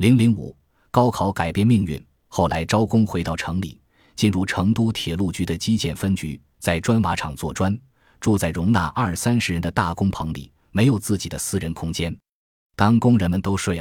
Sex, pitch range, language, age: male, 85-110 Hz, Chinese, 20-39